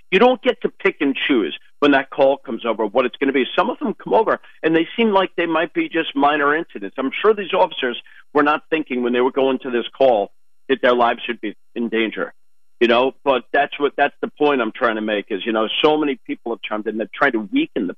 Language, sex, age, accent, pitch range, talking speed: English, male, 50-69, American, 120-160 Hz, 265 wpm